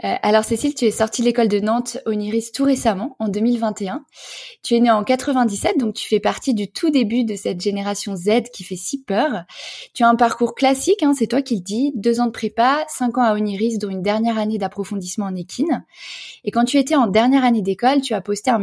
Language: French